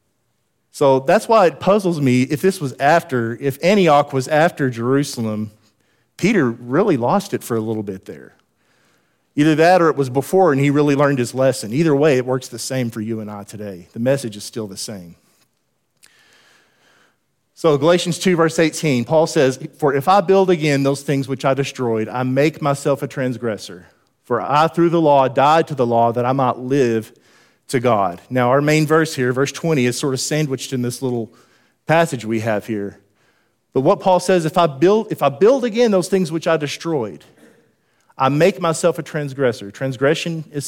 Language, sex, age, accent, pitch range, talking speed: English, male, 40-59, American, 125-175 Hz, 195 wpm